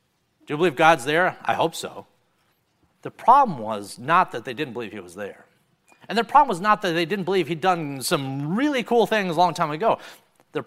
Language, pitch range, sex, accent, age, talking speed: English, 130-180 Hz, male, American, 50-69, 220 wpm